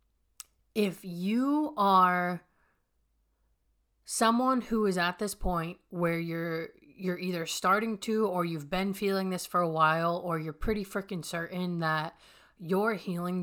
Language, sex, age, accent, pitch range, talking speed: English, female, 30-49, American, 160-190 Hz, 140 wpm